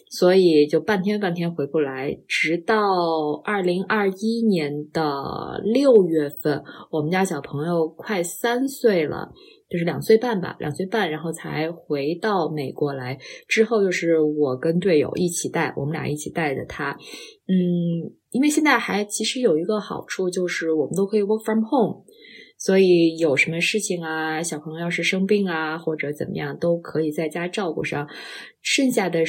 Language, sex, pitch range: Chinese, female, 160-195 Hz